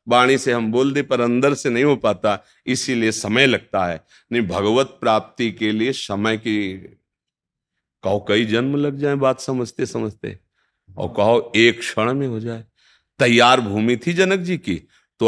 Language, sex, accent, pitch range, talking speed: Hindi, male, native, 120-170 Hz, 175 wpm